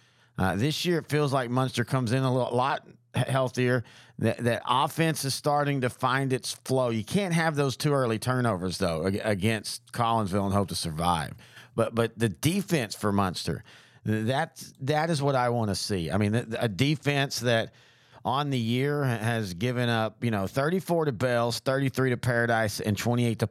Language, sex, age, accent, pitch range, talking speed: English, male, 40-59, American, 115-140 Hz, 180 wpm